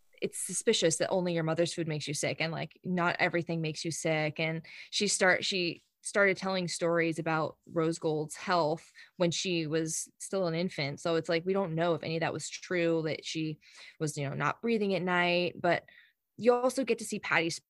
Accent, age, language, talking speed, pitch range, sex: American, 20-39, English, 210 wpm, 160-195 Hz, female